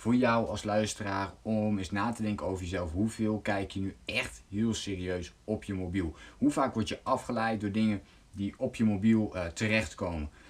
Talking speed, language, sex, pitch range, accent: 195 wpm, Dutch, male, 95-125 Hz, Dutch